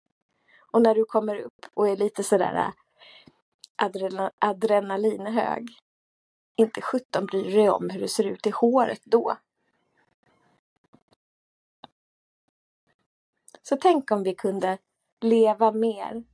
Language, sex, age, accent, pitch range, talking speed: Swedish, female, 30-49, native, 200-240 Hz, 105 wpm